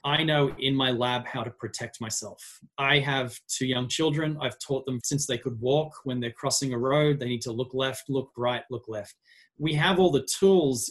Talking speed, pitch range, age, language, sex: 220 wpm, 120-140 Hz, 30-49, English, male